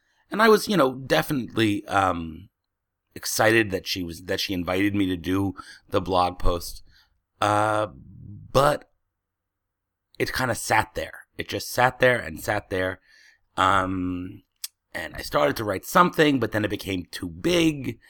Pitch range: 95-120 Hz